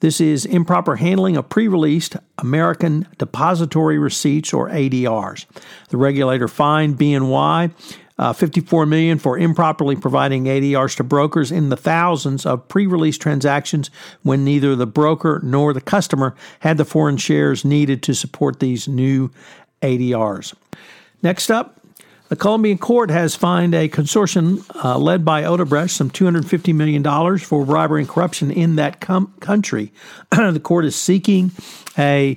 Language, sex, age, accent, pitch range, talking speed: English, male, 50-69, American, 145-175 Hz, 140 wpm